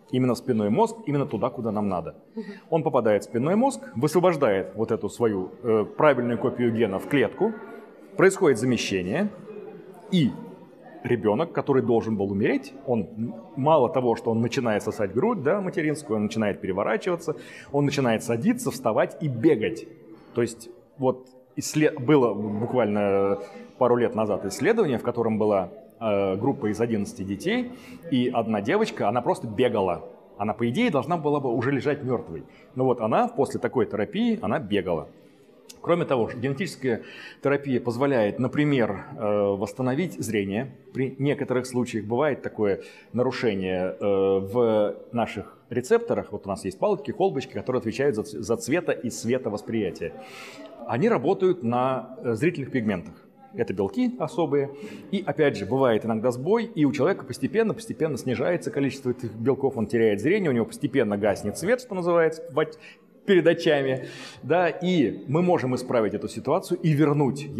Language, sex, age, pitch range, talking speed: Russian, male, 30-49, 110-160 Hz, 145 wpm